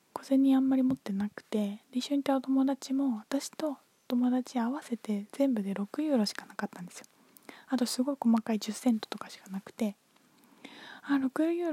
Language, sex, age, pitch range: Japanese, female, 20-39, 210-255 Hz